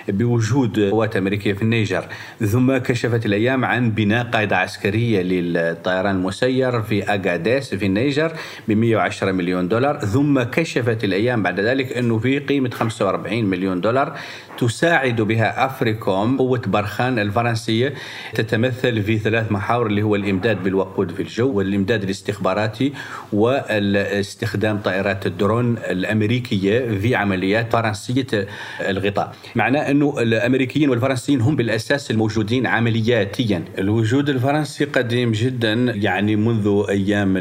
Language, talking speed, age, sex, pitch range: Arabic, 115 wpm, 40-59, male, 100-125 Hz